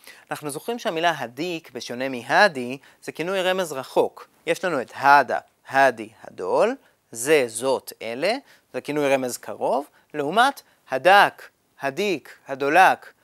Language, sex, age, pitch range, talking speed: Hebrew, male, 30-49, 145-215 Hz, 120 wpm